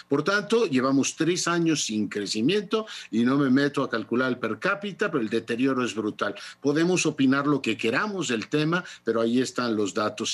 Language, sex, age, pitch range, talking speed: Spanish, male, 50-69, 120-165 Hz, 190 wpm